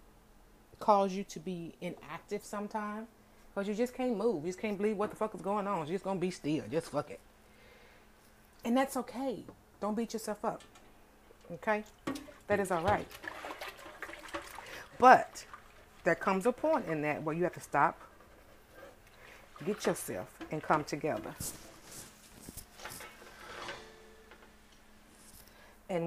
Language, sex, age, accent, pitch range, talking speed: English, female, 40-59, American, 160-205 Hz, 140 wpm